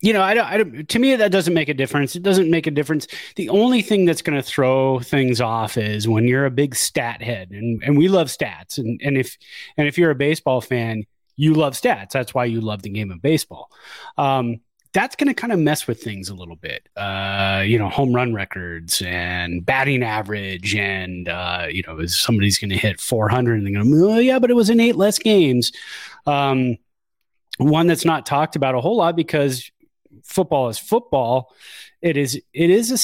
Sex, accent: male, American